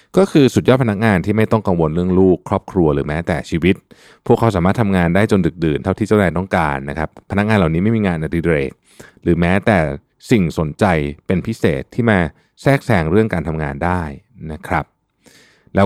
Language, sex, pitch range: Thai, male, 80-110 Hz